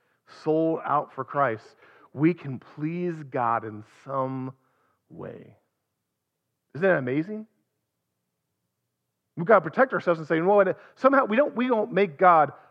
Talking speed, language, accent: 135 wpm, English, American